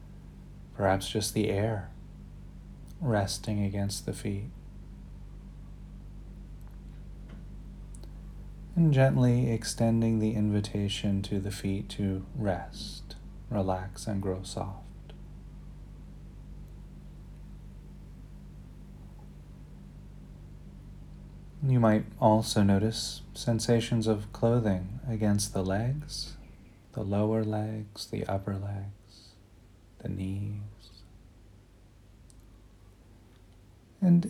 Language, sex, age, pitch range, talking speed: English, male, 30-49, 100-110 Hz, 70 wpm